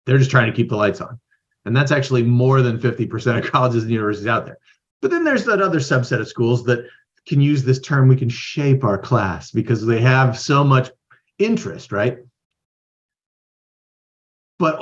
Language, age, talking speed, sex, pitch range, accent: English, 40-59, 185 wpm, male, 120-175 Hz, American